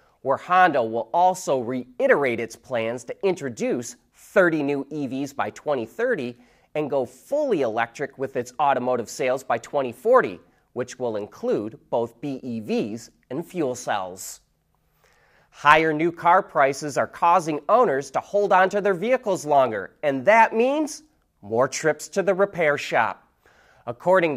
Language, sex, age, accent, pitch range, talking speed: English, male, 30-49, American, 135-225 Hz, 140 wpm